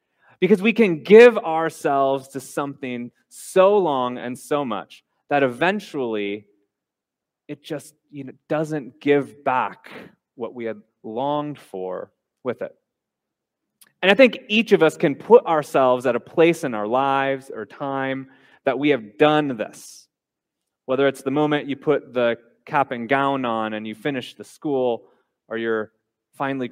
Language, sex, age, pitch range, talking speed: English, male, 30-49, 125-170 Hz, 150 wpm